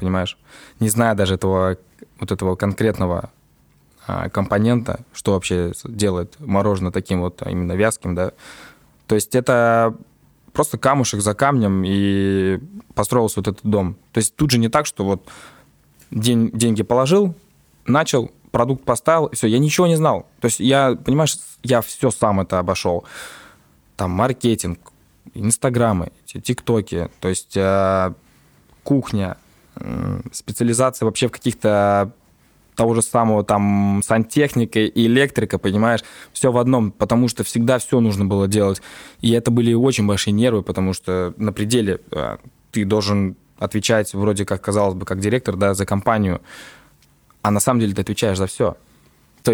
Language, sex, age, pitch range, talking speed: Russian, male, 20-39, 95-120 Hz, 150 wpm